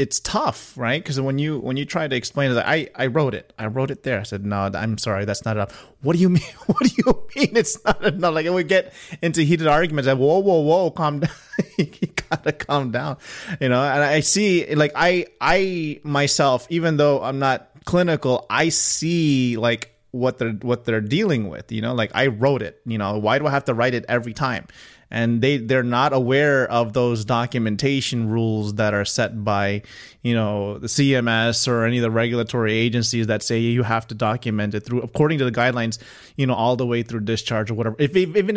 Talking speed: 225 wpm